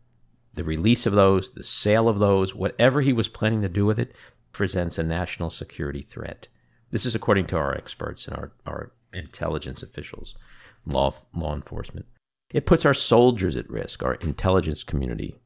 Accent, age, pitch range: American, 50-69, 75-115 Hz